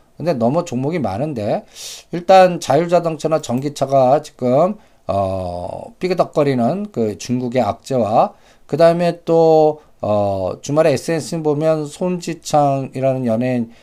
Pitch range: 110-140 Hz